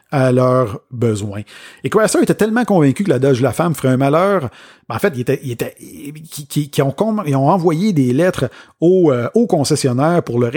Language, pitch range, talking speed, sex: French, 125-160 Hz, 225 wpm, male